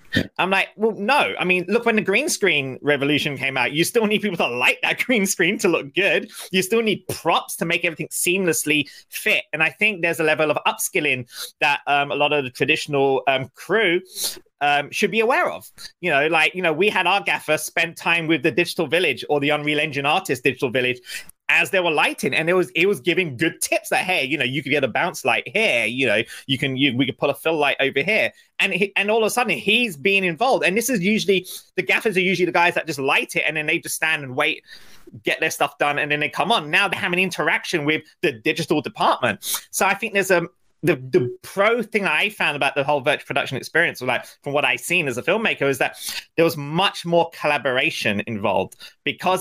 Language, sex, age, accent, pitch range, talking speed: English, male, 30-49, British, 145-195 Hz, 240 wpm